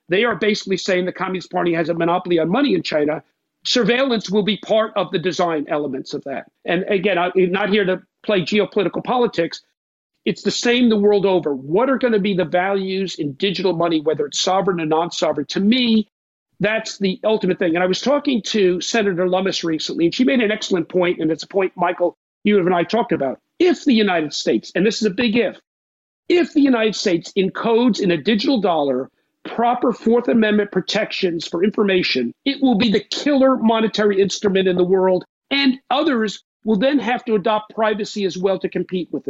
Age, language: 50-69, English